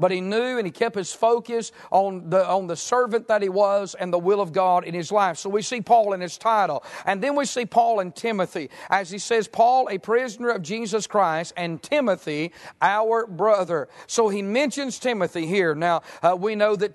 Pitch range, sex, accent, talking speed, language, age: 185-225 Hz, male, American, 215 wpm, English, 50-69